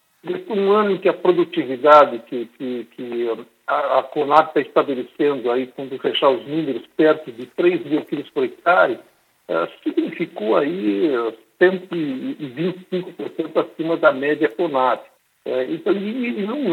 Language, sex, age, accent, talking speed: Portuguese, male, 60-79, Brazilian, 135 wpm